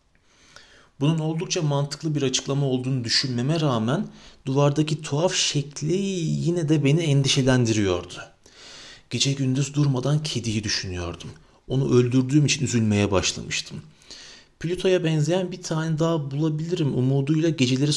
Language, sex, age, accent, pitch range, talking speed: Turkish, male, 40-59, native, 115-150 Hz, 110 wpm